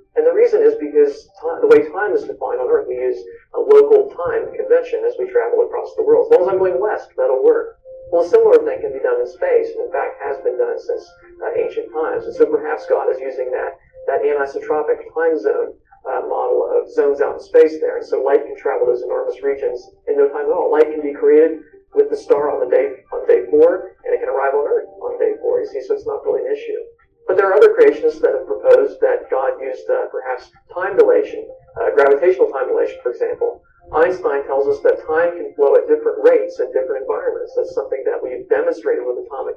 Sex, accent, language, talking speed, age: male, American, English, 235 wpm, 40-59